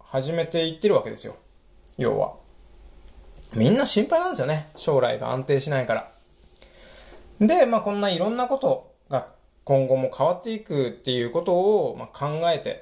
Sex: male